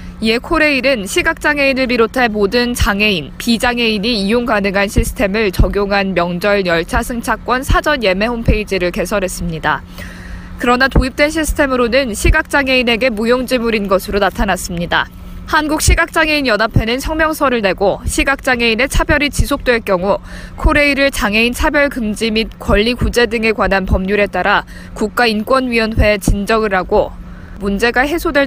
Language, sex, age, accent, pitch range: Korean, female, 20-39, native, 205-270 Hz